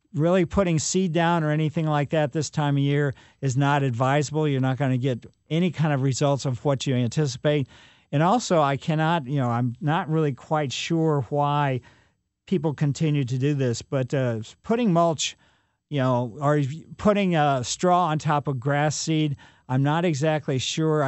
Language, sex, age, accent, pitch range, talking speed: English, male, 50-69, American, 125-160 Hz, 180 wpm